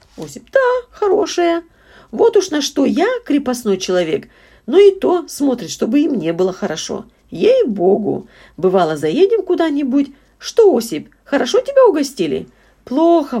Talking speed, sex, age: 130 wpm, female, 40-59